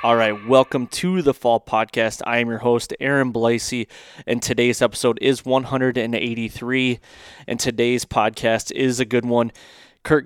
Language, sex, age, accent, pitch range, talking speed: English, male, 20-39, American, 115-130 Hz, 150 wpm